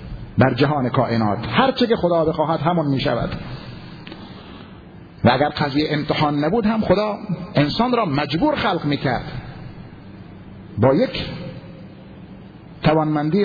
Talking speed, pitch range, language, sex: 115 wpm, 135-180 Hz, Persian, male